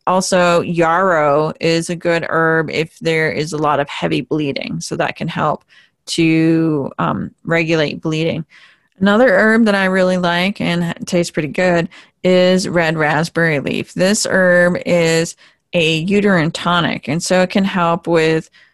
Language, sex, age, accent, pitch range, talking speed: English, female, 30-49, American, 165-205 Hz, 155 wpm